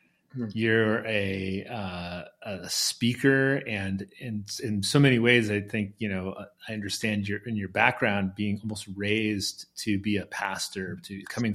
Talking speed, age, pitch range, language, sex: 150 wpm, 30-49, 100-115 Hz, English, male